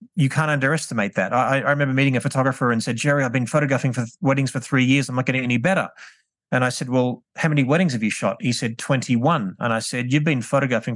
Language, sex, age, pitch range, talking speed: English, male, 30-49, 120-145 Hz, 250 wpm